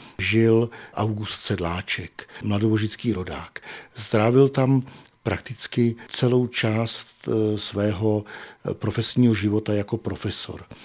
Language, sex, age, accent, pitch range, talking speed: Czech, male, 50-69, native, 110-130 Hz, 85 wpm